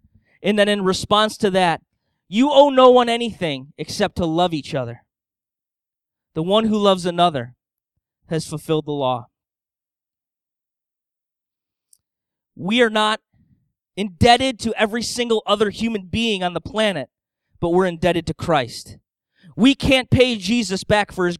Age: 20-39